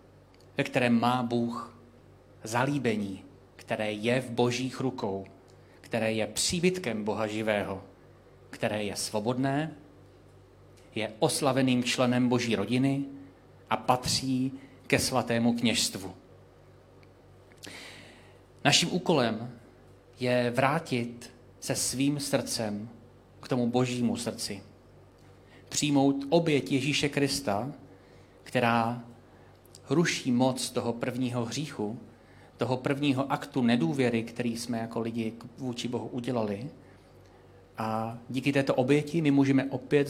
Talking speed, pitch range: 100 wpm, 105-130 Hz